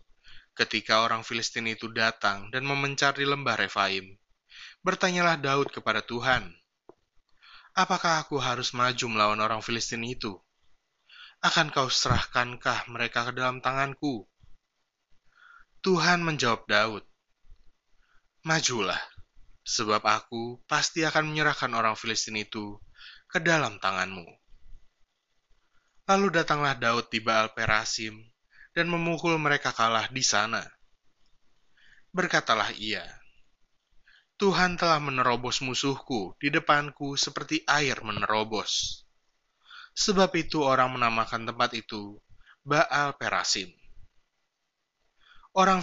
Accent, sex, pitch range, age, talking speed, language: native, male, 115-150 Hz, 20-39, 100 wpm, Indonesian